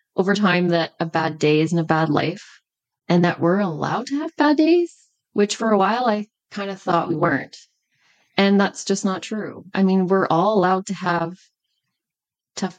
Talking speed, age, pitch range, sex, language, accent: 190 wpm, 20-39, 165-200 Hz, female, English, American